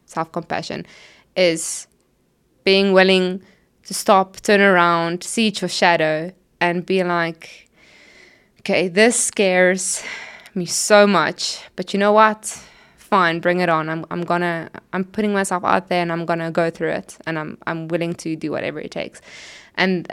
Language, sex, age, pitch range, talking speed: English, female, 20-39, 185-230 Hz, 155 wpm